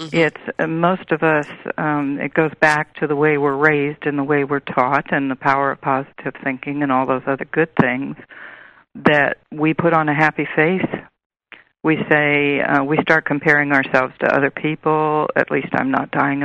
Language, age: English, 60-79